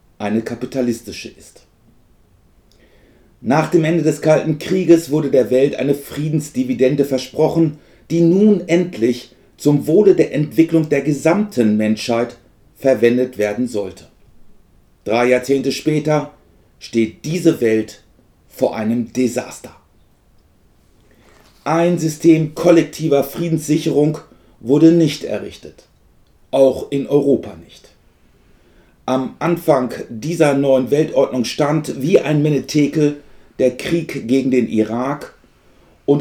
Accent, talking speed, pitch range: German, 105 wpm, 120-150 Hz